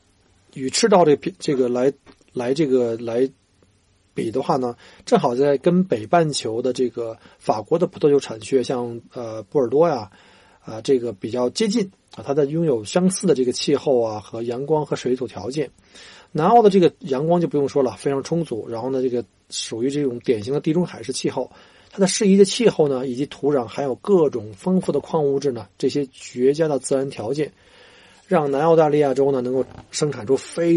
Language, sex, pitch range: Chinese, male, 125-165 Hz